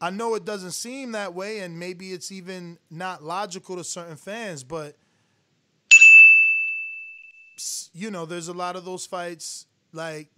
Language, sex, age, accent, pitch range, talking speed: English, male, 20-39, American, 160-210 Hz, 150 wpm